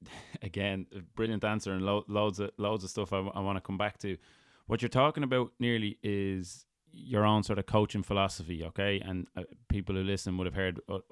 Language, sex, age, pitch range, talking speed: English, male, 20-39, 90-105 Hz, 220 wpm